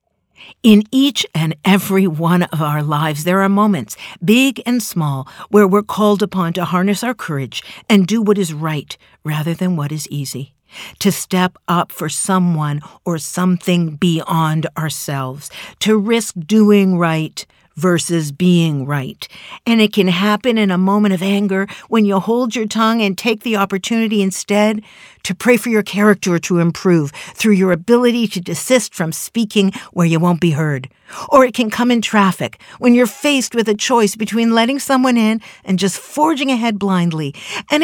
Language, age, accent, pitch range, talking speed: English, 50-69, American, 165-220 Hz, 170 wpm